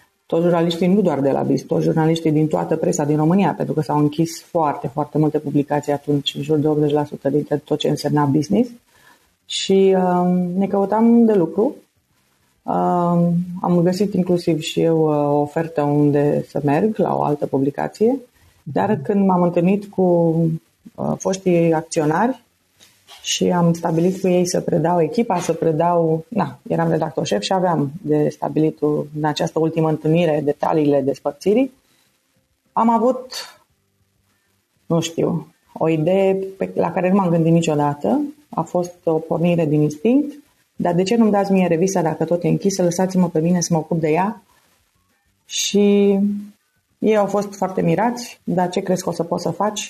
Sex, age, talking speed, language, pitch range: female, 30-49, 160 wpm, Romanian, 150-190 Hz